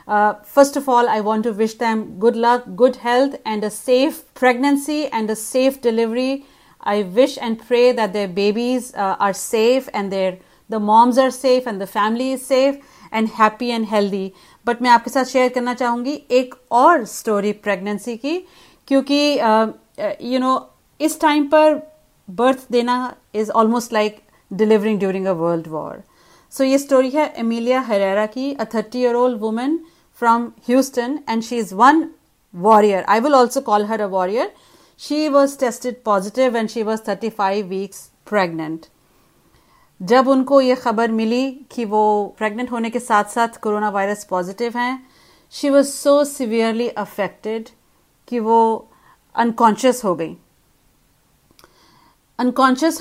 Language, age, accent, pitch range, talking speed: Hindi, 40-59, native, 215-260 Hz, 155 wpm